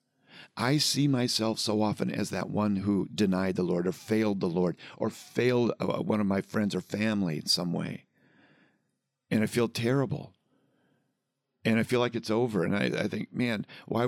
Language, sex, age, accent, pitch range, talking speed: English, male, 50-69, American, 95-130 Hz, 185 wpm